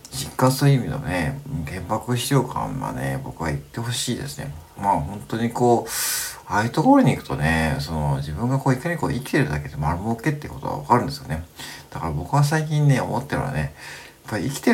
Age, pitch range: 50-69, 85-135 Hz